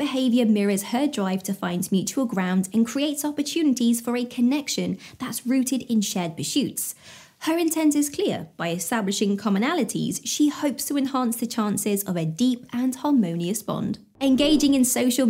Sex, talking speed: female, 160 wpm